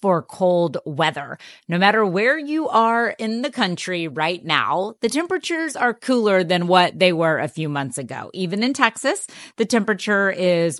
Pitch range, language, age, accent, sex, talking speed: 165-220 Hz, English, 30-49, American, female, 170 wpm